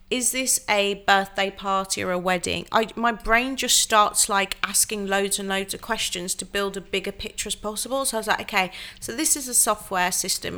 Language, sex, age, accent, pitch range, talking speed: English, female, 40-59, British, 195-230 Hz, 215 wpm